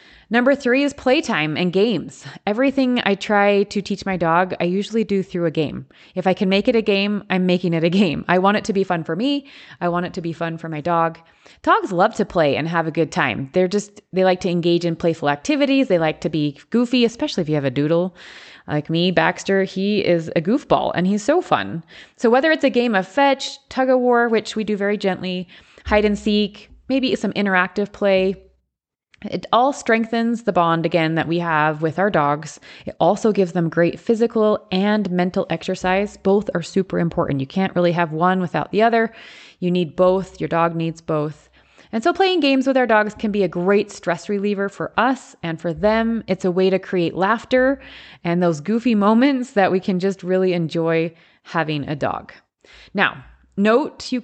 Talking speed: 210 wpm